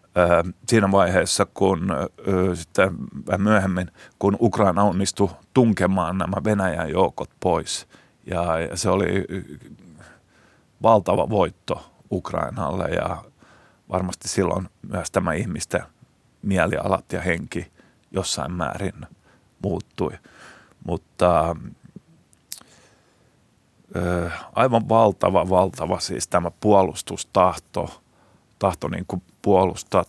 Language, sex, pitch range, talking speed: Finnish, male, 90-100 Hz, 85 wpm